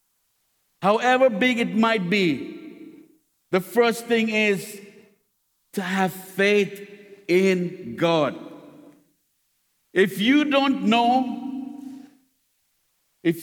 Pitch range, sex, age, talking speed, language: 160-220 Hz, male, 50-69, 85 wpm, English